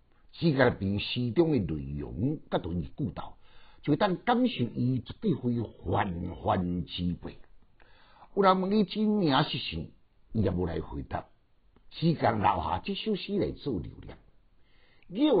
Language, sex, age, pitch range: Chinese, male, 60-79, 100-150 Hz